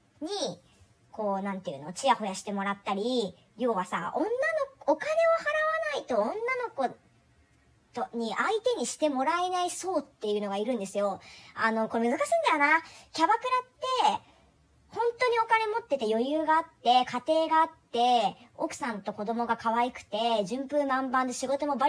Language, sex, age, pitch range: Japanese, male, 40-59, 230-335 Hz